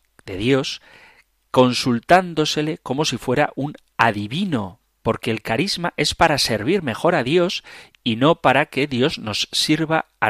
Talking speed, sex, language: 145 wpm, male, Spanish